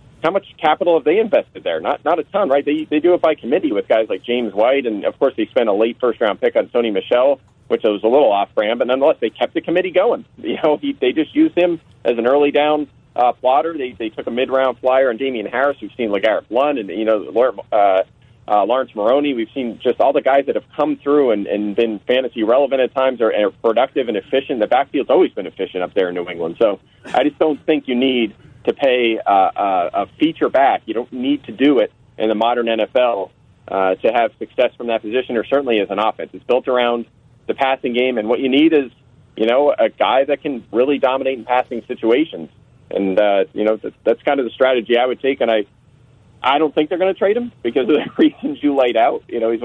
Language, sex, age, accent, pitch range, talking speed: English, male, 40-59, American, 115-150 Hz, 250 wpm